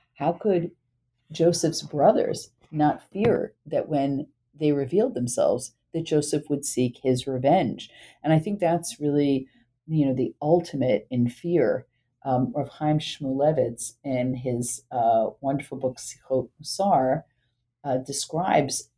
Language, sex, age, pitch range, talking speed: English, female, 40-59, 125-155 Hz, 130 wpm